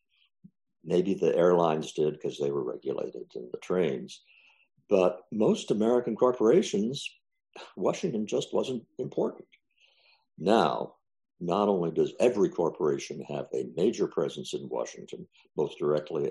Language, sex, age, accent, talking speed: English, male, 60-79, American, 120 wpm